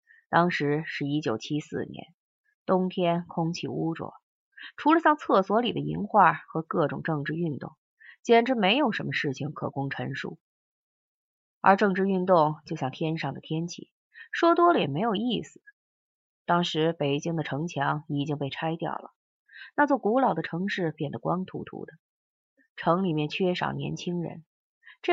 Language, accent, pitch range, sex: Chinese, native, 155-220 Hz, female